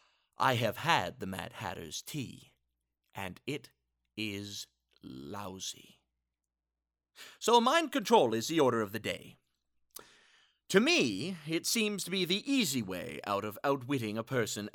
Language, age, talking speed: English, 40-59, 140 wpm